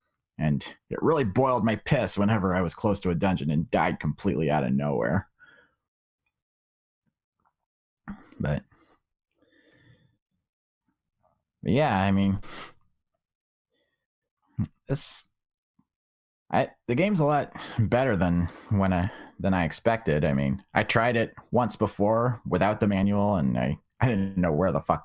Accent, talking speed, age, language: American, 130 wpm, 30-49, English